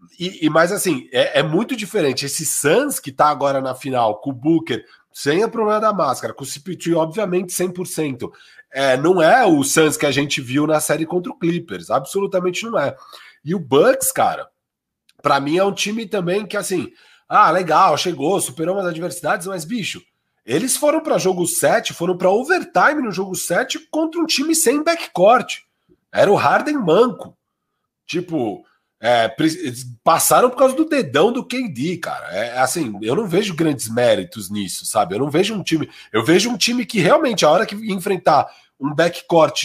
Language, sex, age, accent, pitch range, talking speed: Portuguese, male, 40-59, Brazilian, 160-245 Hz, 185 wpm